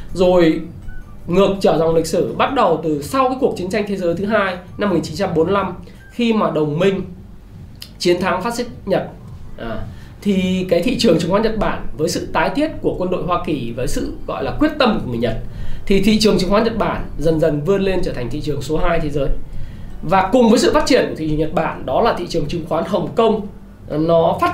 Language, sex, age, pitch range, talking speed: Vietnamese, male, 20-39, 155-210 Hz, 235 wpm